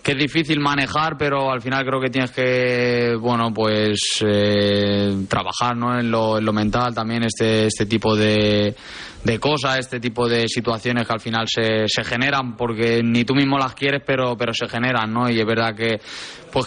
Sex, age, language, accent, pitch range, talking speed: male, 20-39, English, Spanish, 110-125 Hz, 195 wpm